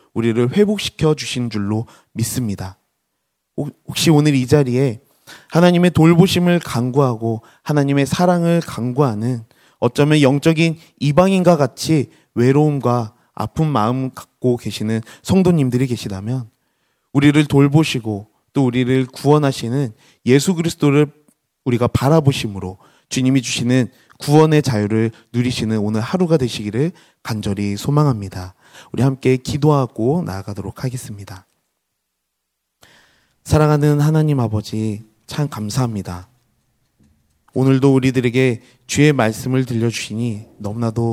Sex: male